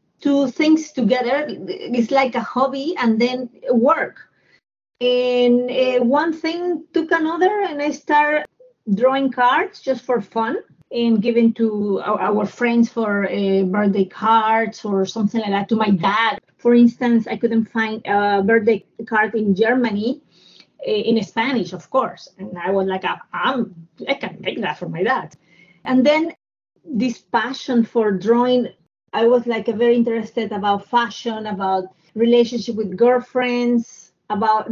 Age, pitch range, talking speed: 30-49, 215-265 Hz, 145 wpm